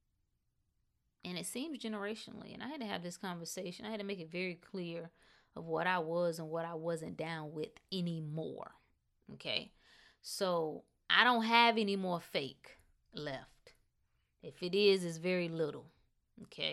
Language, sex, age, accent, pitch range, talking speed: English, female, 20-39, American, 165-220 Hz, 160 wpm